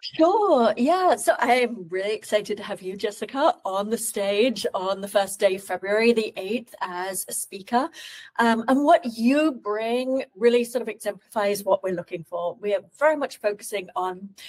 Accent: British